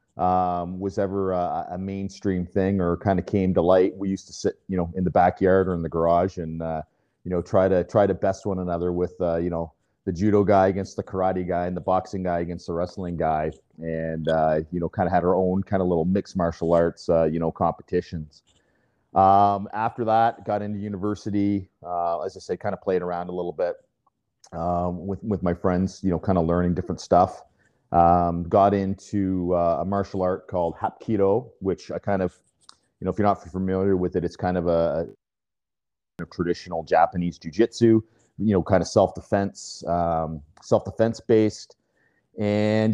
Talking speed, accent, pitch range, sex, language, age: 200 wpm, American, 85-100 Hz, male, English, 40-59